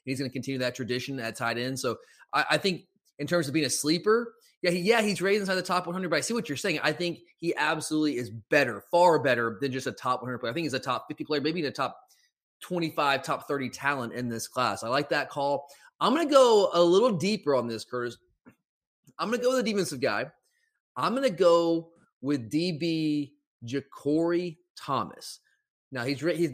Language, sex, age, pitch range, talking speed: English, male, 30-49, 145-205 Hz, 220 wpm